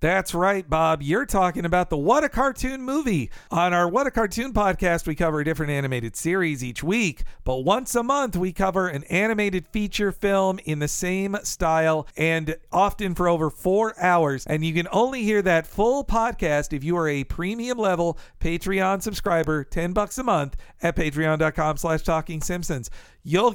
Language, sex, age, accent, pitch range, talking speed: English, male, 50-69, American, 160-200 Hz, 180 wpm